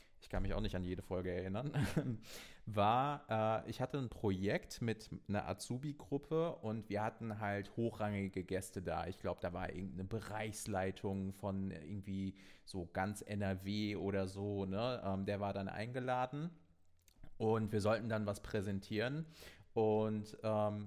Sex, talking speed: male, 145 wpm